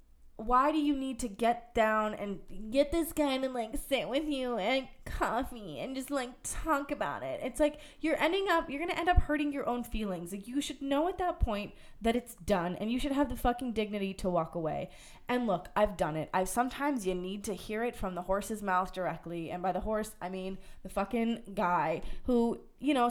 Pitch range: 185-250 Hz